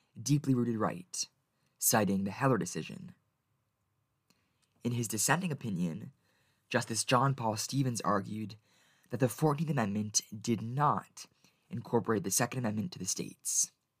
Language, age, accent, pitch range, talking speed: English, 20-39, American, 105-135 Hz, 120 wpm